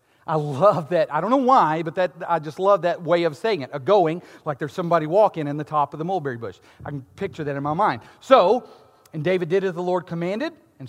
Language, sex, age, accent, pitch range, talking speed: English, male, 40-59, American, 145-210 Hz, 255 wpm